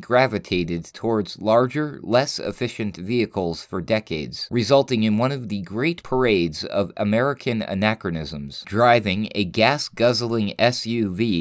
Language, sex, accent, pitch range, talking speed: English, male, American, 95-125 Hz, 115 wpm